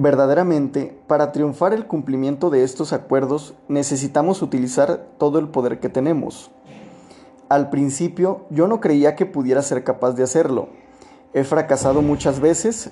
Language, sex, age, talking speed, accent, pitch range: Spanish, male, 30-49, 140 wpm, Mexican, 135-180 Hz